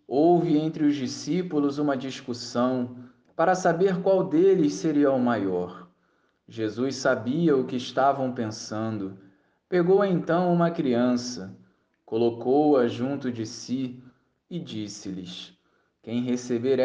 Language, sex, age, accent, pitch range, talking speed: Portuguese, male, 20-39, Brazilian, 115-170 Hz, 110 wpm